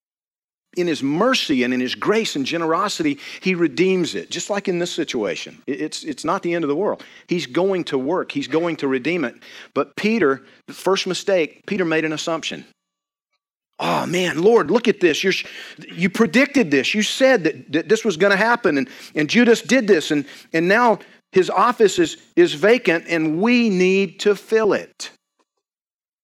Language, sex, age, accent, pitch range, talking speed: English, male, 40-59, American, 140-210 Hz, 185 wpm